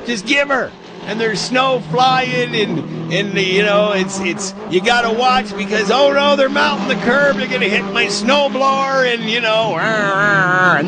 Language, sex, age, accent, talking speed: English, male, 50-69, American, 180 wpm